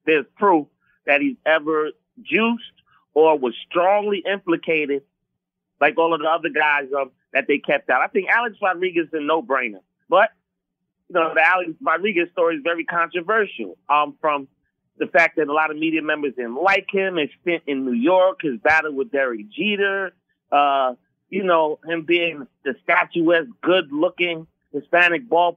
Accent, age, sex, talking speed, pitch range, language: American, 30-49, male, 175 wpm, 155-185 Hz, English